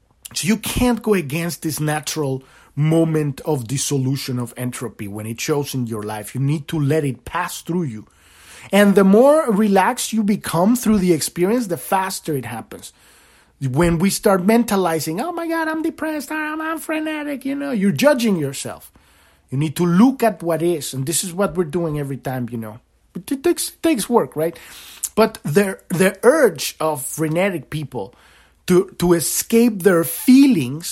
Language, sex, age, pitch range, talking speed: English, male, 30-49, 140-220 Hz, 175 wpm